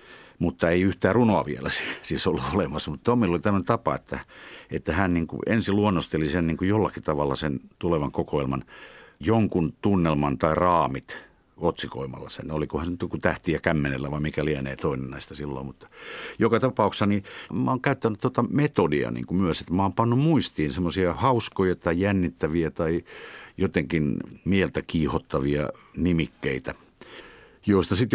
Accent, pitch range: native, 75-100 Hz